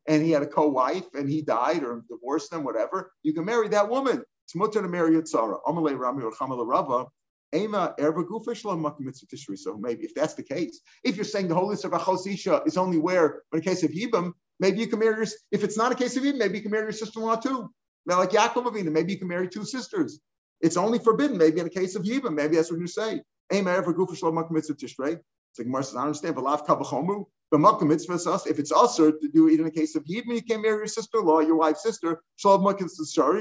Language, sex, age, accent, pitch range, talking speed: English, male, 50-69, American, 160-210 Hz, 200 wpm